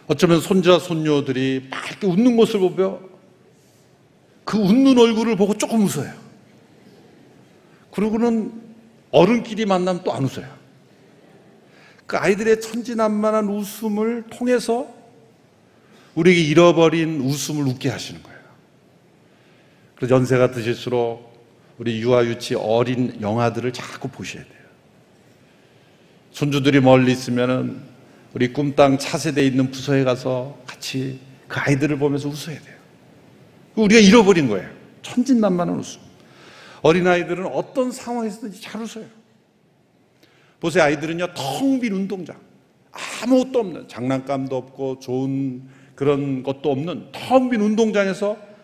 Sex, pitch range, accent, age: male, 135-220 Hz, native, 50-69